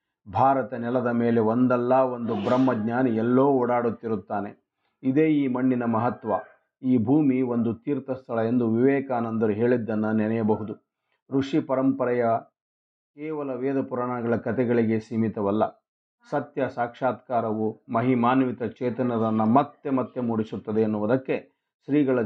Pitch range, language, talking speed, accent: 110-130 Hz, Kannada, 95 wpm, native